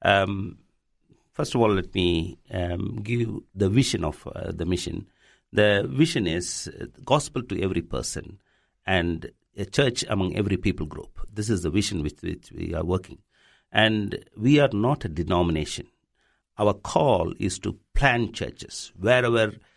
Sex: male